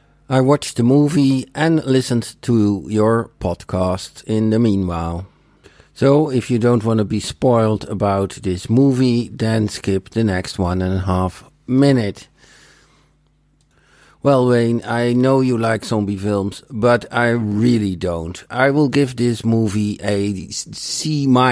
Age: 60-79